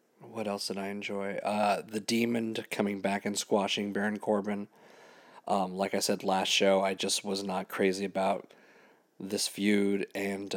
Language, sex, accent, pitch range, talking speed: English, male, American, 95-105 Hz, 165 wpm